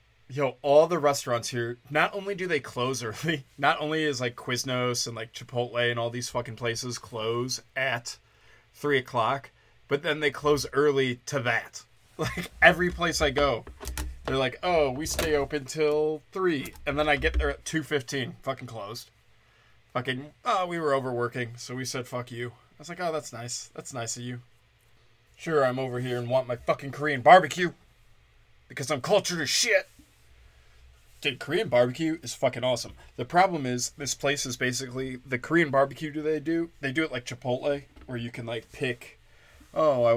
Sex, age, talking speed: male, 20-39, 185 wpm